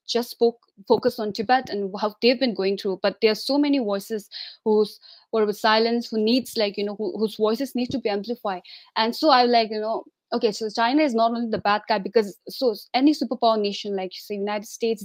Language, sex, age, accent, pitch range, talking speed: English, female, 20-39, Indian, 210-245 Hz, 230 wpm